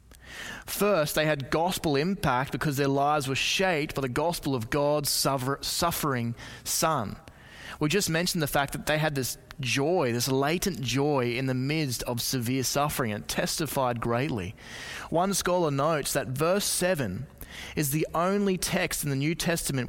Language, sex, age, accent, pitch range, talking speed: English, male, 20-39, Australian, 115-160 Hz, 160 wpm